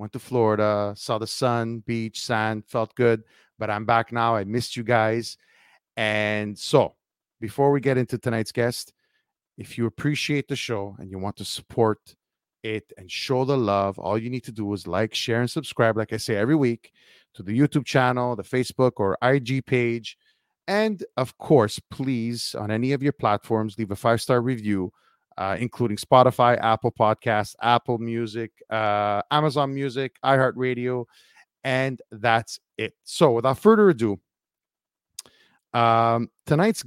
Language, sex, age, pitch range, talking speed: English, male, 30-49, 110-130 Hz, 160 wpm